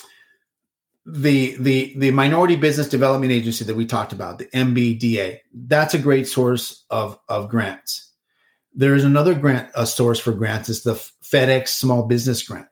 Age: 40-59